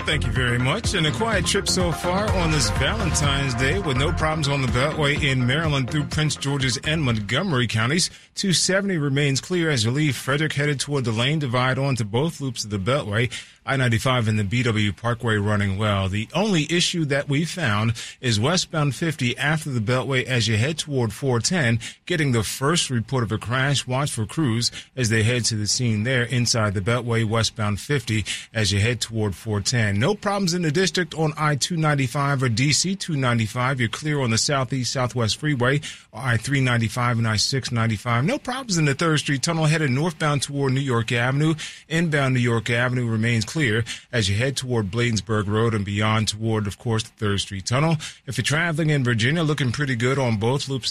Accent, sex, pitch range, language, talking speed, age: American, male, 115-150 Hz, English, 190 wpm, 30-49